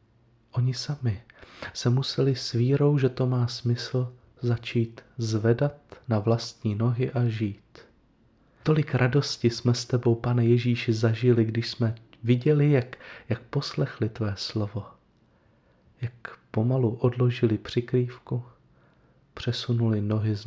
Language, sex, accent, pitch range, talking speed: Czech, male, native, 115-125 Hz, 115 wpm